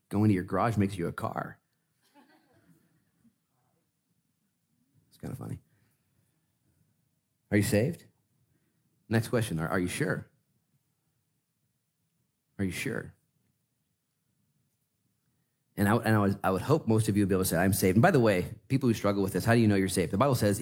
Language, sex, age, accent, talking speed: English, male, 40-59, American, 170 wpm